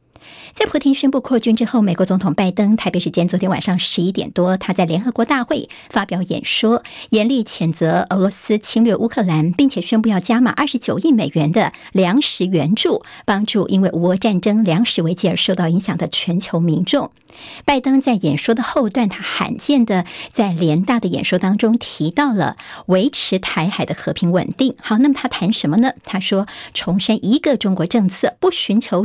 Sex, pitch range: male, 180-240 Hz